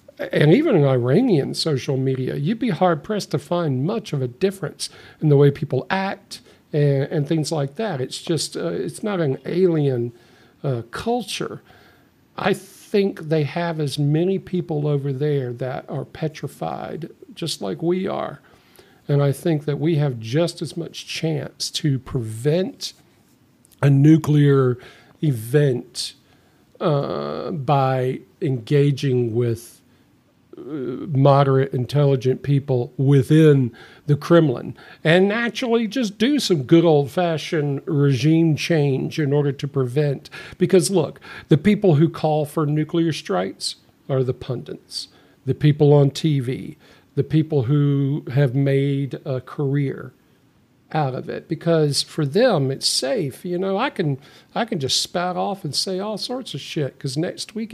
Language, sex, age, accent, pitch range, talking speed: English, male, 50-69, American, 135-170 Hz, 145 wpm